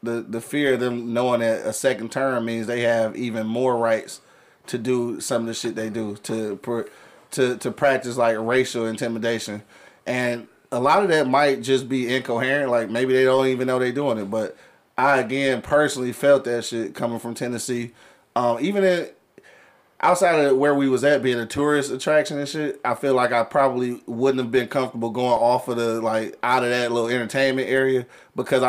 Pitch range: 120-140 Hz